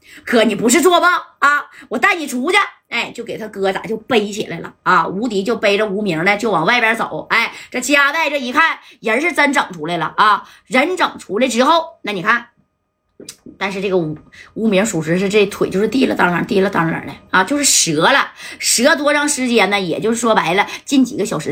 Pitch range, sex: 195-275 Hz, female